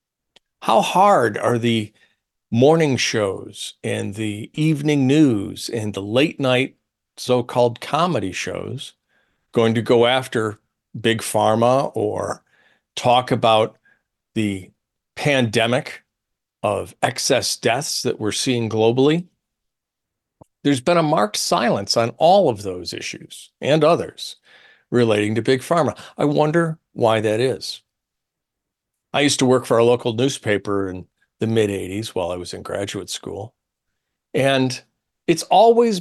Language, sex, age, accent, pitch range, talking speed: English, male, 50-69, American, 105-135 Hz, 130 wpm